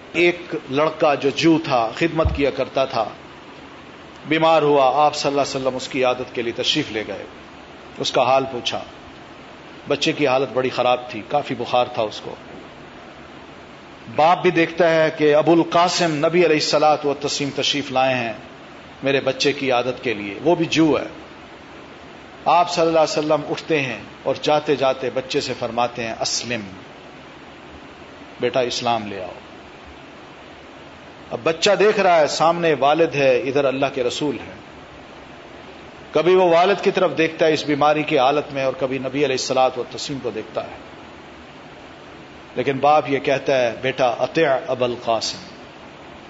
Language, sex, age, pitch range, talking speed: Urdu, male, 40-59, 130-160 Hz, 165 wpm